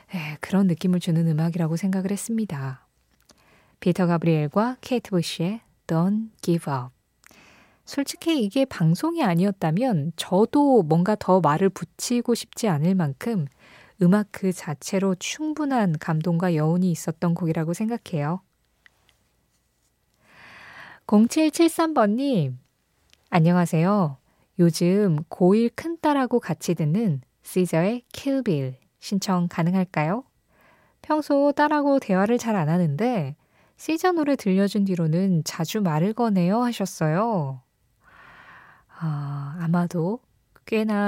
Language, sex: Korean, female